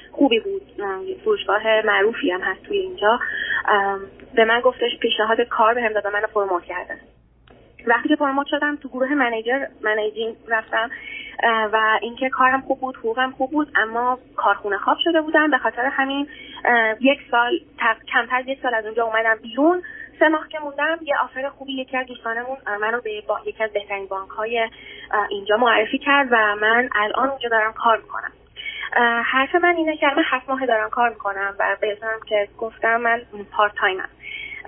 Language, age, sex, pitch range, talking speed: Persian, 20-39, female, 215-275 Hz, 170 wpm